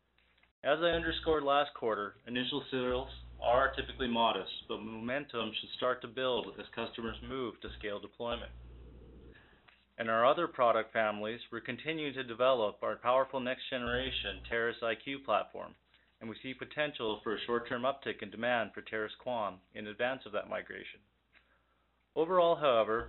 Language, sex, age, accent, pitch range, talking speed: English, male, 30-49, American, 105-130 Hz, 150 wpm